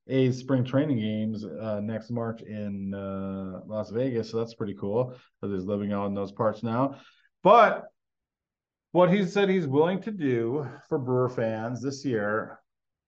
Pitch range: 110-135 Hz